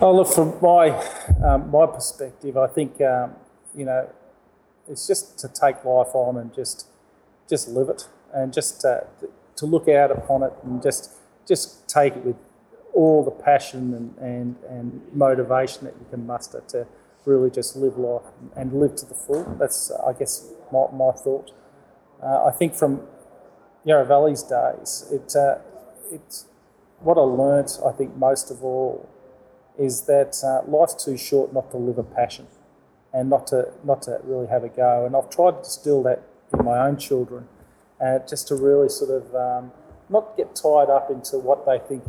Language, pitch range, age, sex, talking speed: English, 125-140 Hz, 30-49, male, 185 wpm